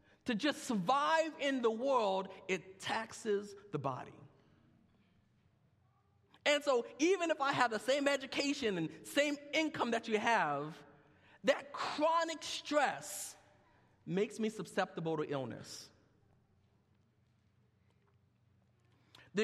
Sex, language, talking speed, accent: male, English, 105 wpm, American